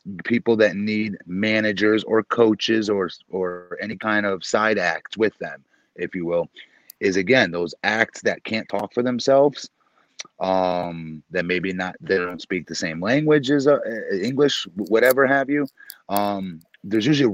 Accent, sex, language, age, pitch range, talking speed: American, male, English, 30-49, 105-135 Hz, 160 wpm